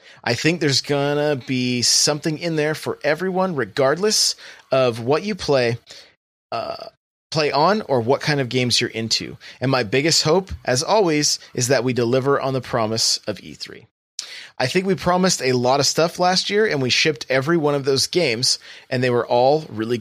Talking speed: 190 wpm